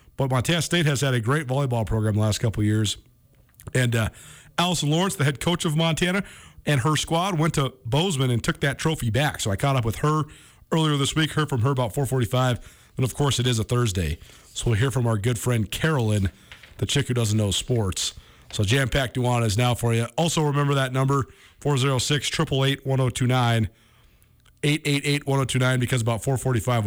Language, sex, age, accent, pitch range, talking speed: English, male, 40-59, American, 115-145 Hz, 205 wpm